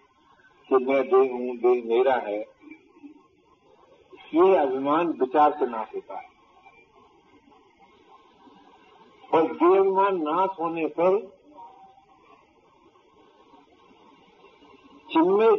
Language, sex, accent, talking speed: Hindi, male, native, 75 wpm